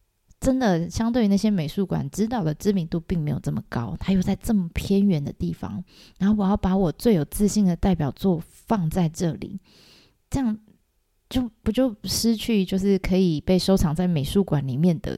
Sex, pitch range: female, 155-195 Hz